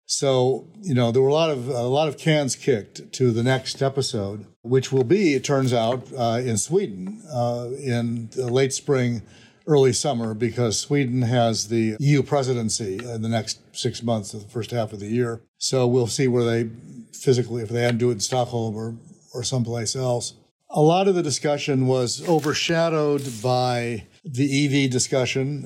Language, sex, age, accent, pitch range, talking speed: English, male, 60-79, American, 115-135 Hz, 180 wpm